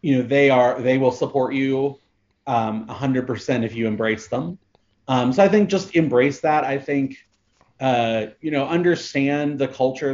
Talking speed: 170 wpm